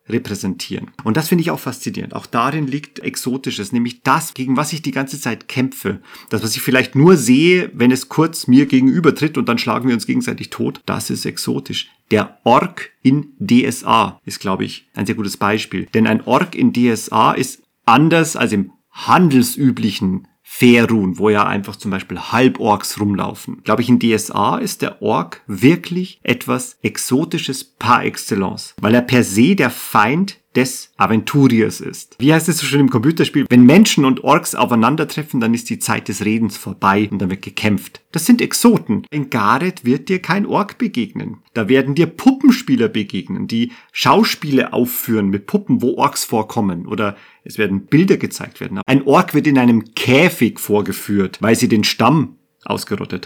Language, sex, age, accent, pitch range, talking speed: German, male, 40-59, German, 110-160 Hz, 175 wpm